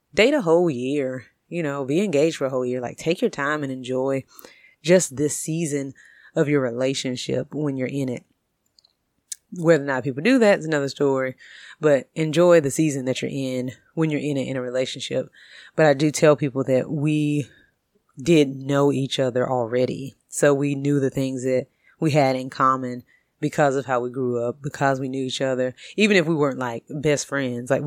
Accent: American